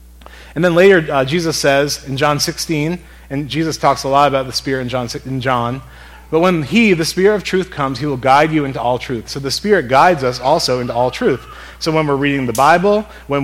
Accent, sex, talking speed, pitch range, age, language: American, male, 230 wpm, 125-165 Hz, 30-49, English